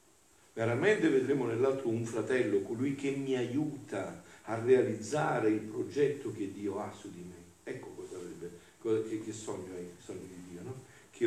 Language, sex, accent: Italian, male, native